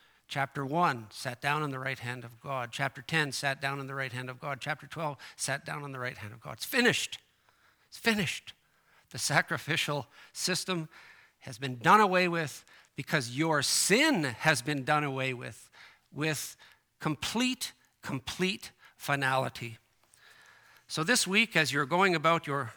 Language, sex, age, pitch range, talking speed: English, male, 50-69, 130-160 Hz, 165 wpm